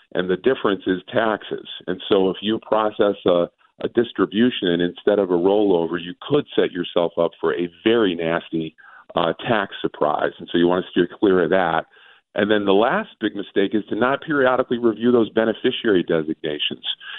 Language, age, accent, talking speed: English, 40-59, American, 180 wpm